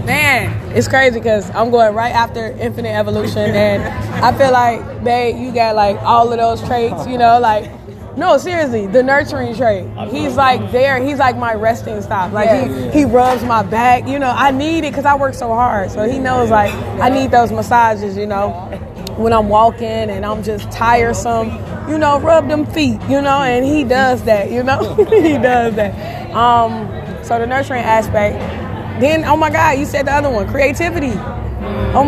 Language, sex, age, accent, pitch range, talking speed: English, female, 20-39, American, 205-255 Hz, 195 wpm